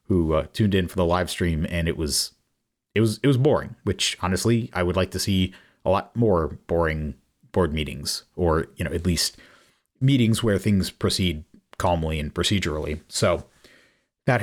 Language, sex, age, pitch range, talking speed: English, male, 30-49, 85-105 Hz, 180 wpm